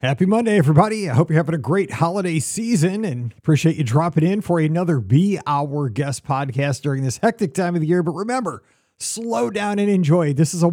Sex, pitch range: male, 140-180 Hz